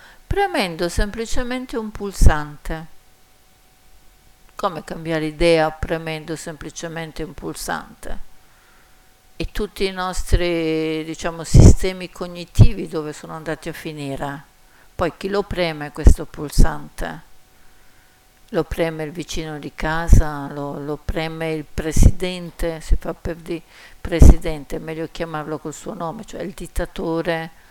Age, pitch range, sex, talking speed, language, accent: 50-69, 155-175 Hz, female, 115 wpm, Italian, native